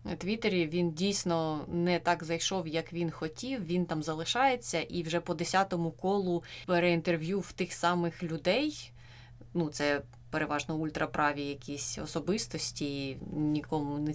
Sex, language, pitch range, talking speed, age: female, Ukrainian, 155-180 Hz, 125 wpm, 20-39